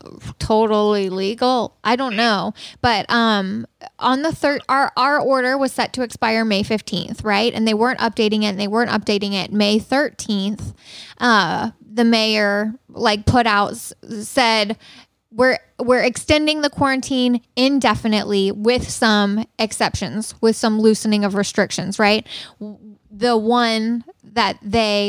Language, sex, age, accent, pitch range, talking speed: English, female, 10-29, American, 210-240 Hz, 140 wpm